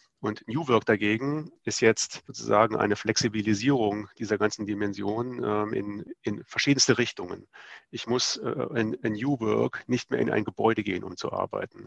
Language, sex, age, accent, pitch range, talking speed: German, male, 40-59, German, 105-120 Hz, 165 wpm